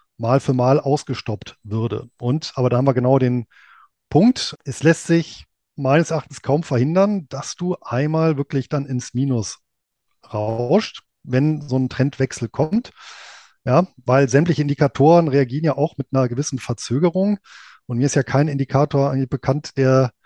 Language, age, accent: German, 20-39, German